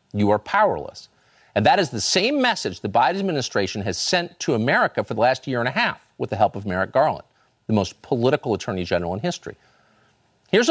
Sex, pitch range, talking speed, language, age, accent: male, 115-195 Hz, 205 wpm, English, 50-69, American